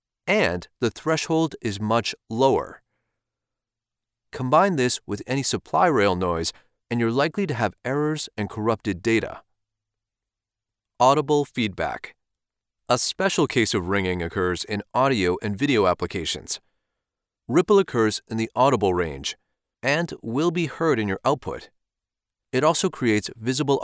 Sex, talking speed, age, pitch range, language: male, 130 wpm, 30-49, 100-150 Hz, English